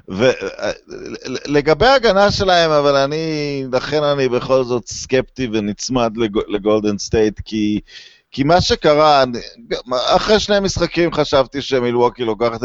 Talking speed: 120 wpm